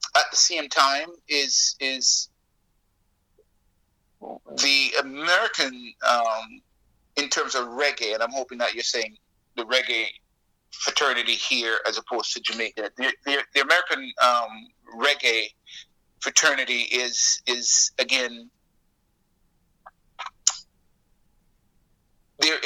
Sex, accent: male, American